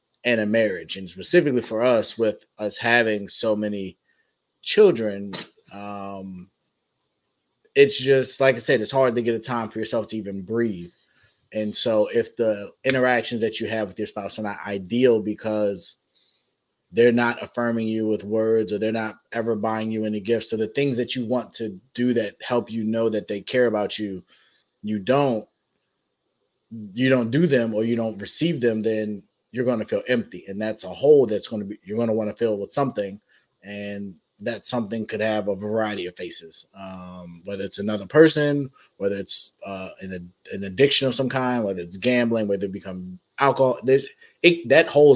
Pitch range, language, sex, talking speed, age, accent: 100-120 Hz, English, male, 190 wpm, 20-39, American